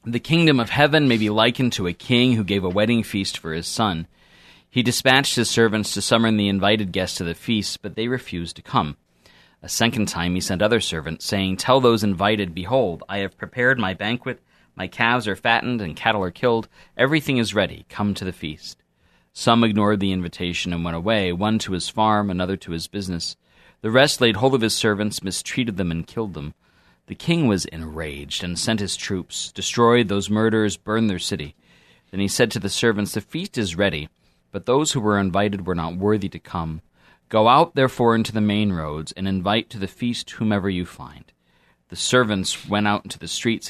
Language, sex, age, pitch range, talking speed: English, male, 40-59, 90-115 Hz, 205 wpm